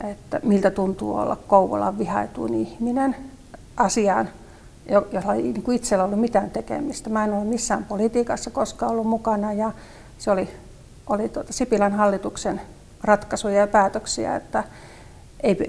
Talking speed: 140 wpm